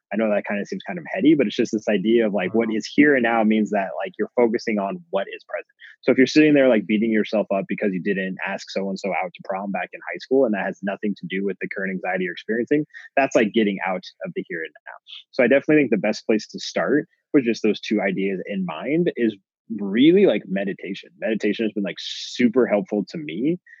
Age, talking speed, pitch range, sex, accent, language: 20-39, 250 wpm, 100-125 Hz, male, American, English